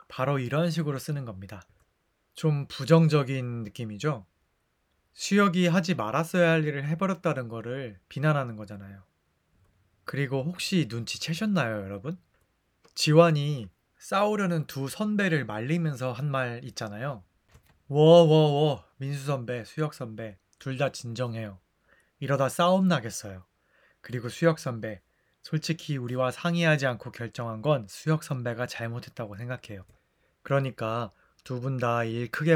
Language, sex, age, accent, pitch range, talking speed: English, male, 20-39, Korean, 110-155 Hz, 100 wpm